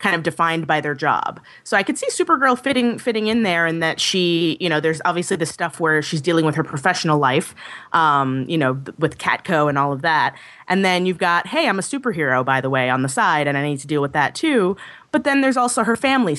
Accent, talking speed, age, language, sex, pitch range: American, 250 wpm, 20-39, English, female, 150-210 Hz